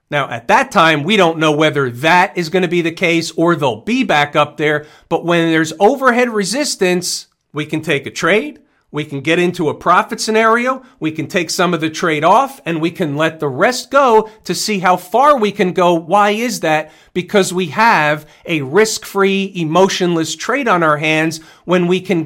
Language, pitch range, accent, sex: English, 160-195 Hz, American, male